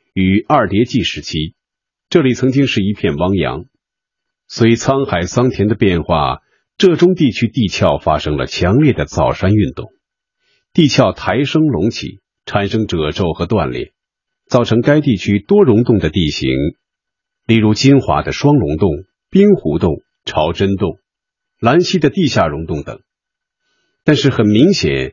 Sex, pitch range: male, 85-145 Hz